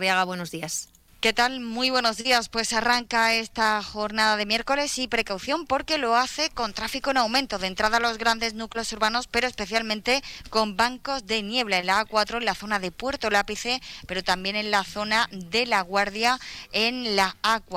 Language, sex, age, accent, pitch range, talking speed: Spanish, female, 20-39, Spanish, 190-225 Hz, 185 wpm